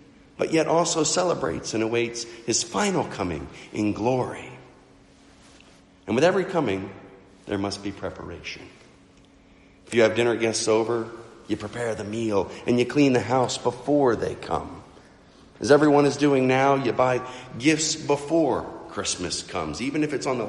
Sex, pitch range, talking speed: male, 100-150 Hz, 155 wpm